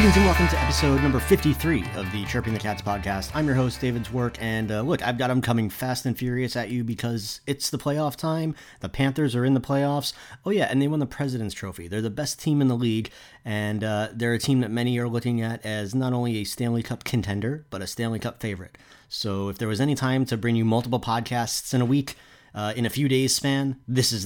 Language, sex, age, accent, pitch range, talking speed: English, male, 30-49, American, 105-125 Hz, 245 wpm